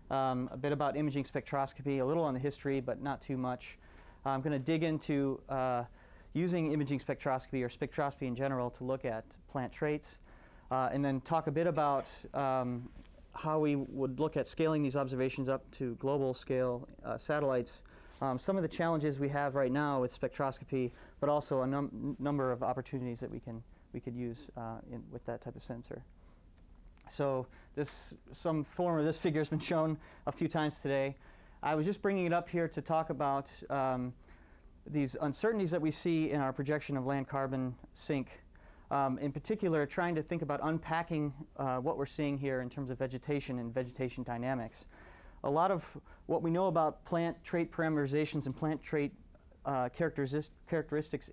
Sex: male